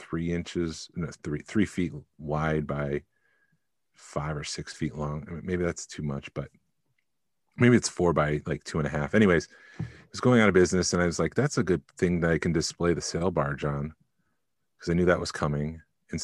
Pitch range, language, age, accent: 75-90 Hz, English, 40-59, American